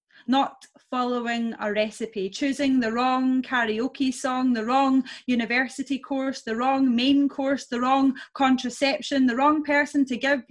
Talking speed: 145 wpm